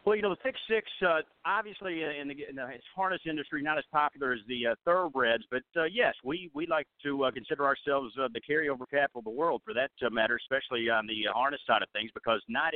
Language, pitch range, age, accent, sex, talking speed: English, 125-155 Hz, 50-69, American, male, 235 wpm